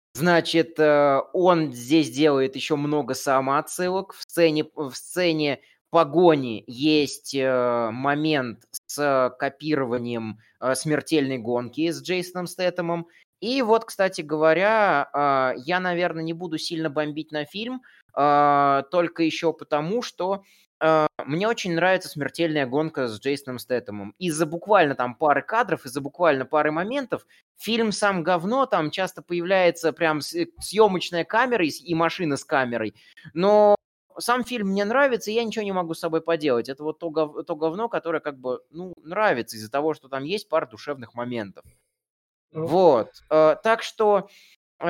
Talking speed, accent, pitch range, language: 135 wpm, native, 145-180 Hz, Russian